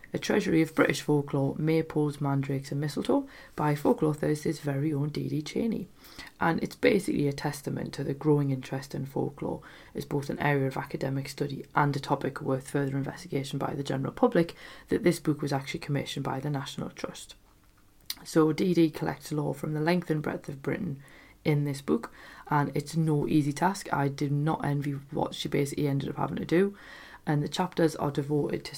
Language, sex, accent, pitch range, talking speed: English, female, British, 140-160 Hz, 195 wpm